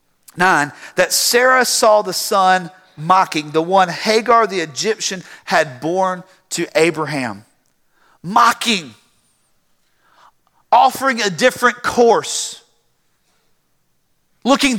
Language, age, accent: English, 40-59, American